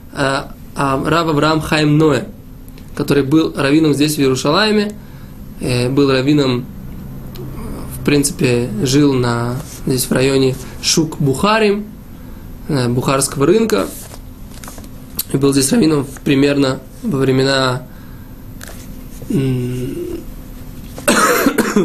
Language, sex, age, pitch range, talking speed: Russian, male, 20-39, 135-170 Hz, 90 wpm